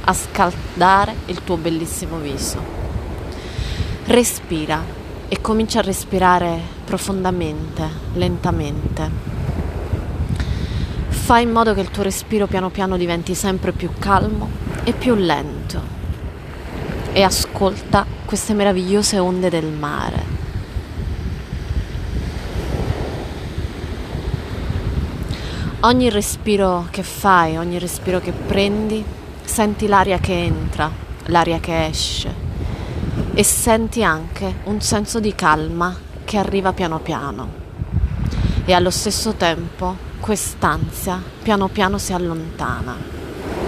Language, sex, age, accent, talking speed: Italian, female, 20-39, native, 100 wpm